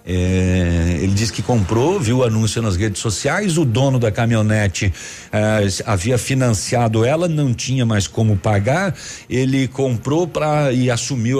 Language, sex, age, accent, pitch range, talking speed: Portuguese, male, 60-79, Brazilian, 100-145 Hz, 155 wpm